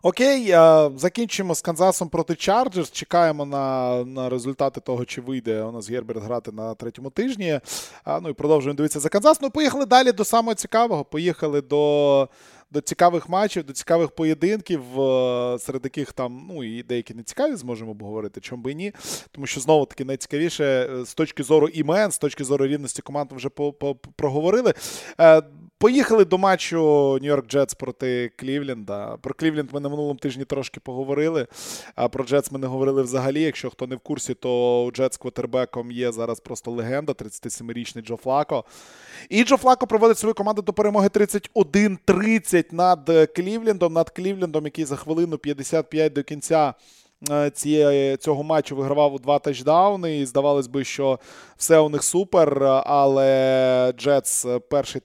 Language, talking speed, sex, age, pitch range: Russian, 155 wpm, male, 20-39, 130-170 Hz